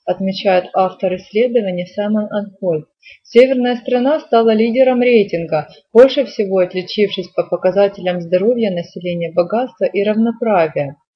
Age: 30-49